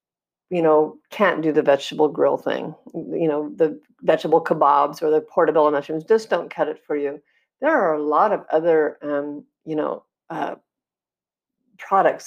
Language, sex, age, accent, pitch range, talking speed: English, female, 50-69, American, 155-195 Hz, 165 wpm